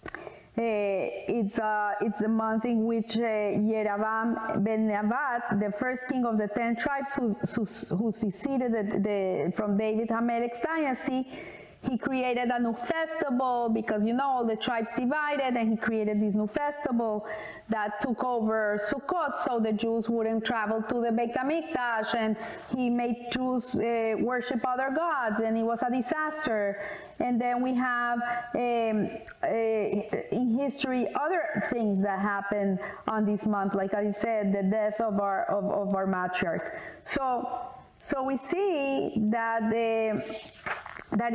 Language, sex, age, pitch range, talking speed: English, female, 30-49, 215-250 Hz, 150 wpm